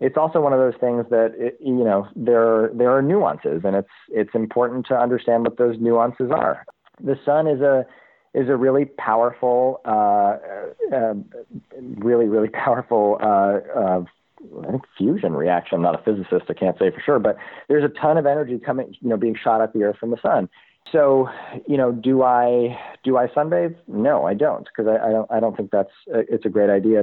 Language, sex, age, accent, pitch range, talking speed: English, male, 40-59, American, 105-130 Hz, 200 wpm